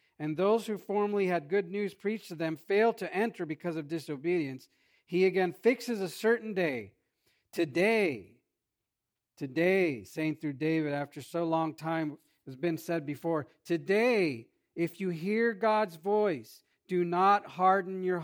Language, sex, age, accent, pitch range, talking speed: English, male, 50-69, American, 140-180 Hz, 150 wpm